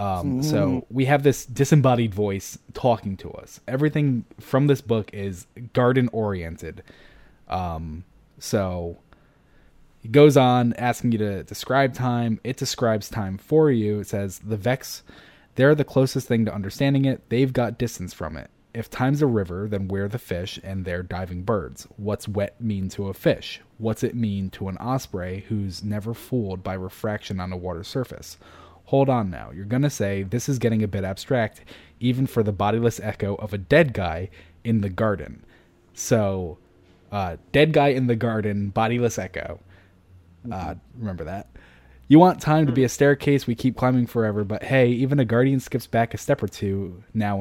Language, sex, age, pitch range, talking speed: English, male, 20-39, 95-125 Hz, 180 wpm